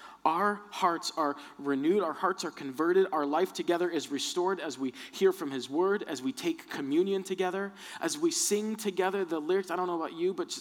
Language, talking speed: English, 205 wpm